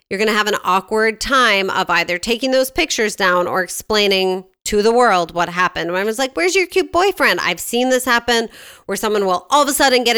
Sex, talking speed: female, 235 wpm